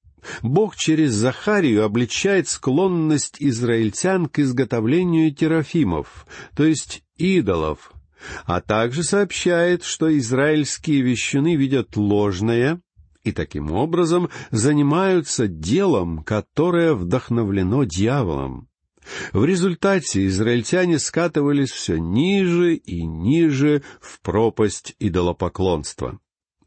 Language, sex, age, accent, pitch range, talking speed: Russian, male, 50-69, native, 105-160 Hz, 90 wpm